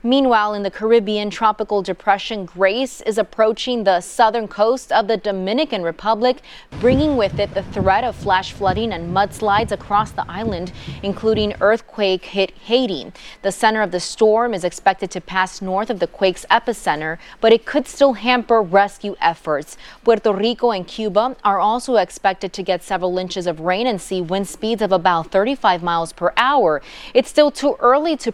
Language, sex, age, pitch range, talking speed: English, female, 20-39, 185-230 Hz, 175 wpm